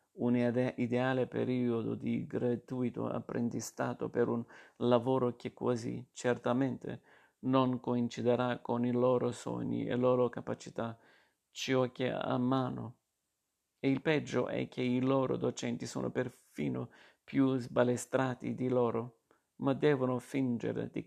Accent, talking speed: native, 125 wpm